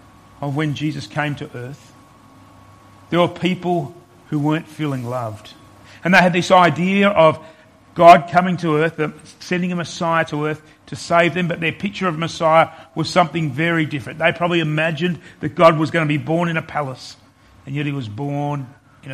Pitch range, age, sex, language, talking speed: 120-175 Hz, 40-59, male, English, 185 wpm